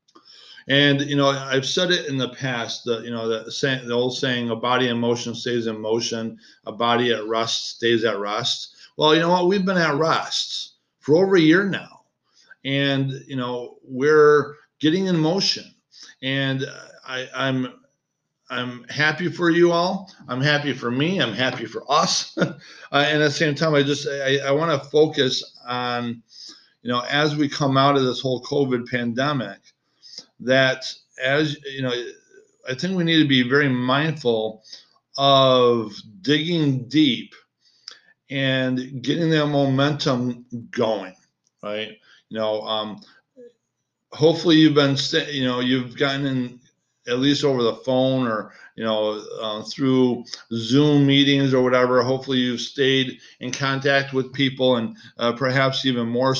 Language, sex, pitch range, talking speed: English, male, 120-145 Hz, 155 wpm